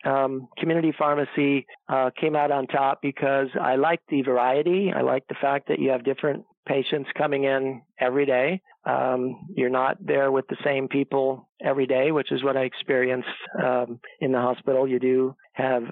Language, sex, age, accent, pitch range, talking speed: English, male, 50-69, American, 130-140 Hz, 180 wpm